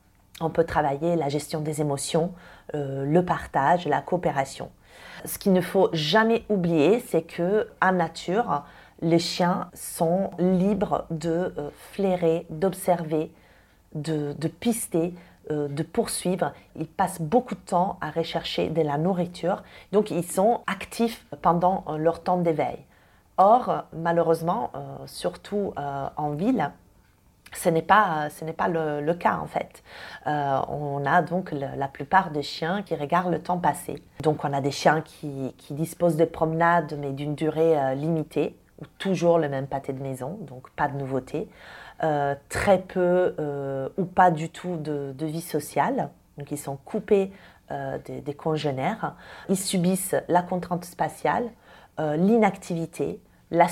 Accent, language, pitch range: French, French, 145-180 Hz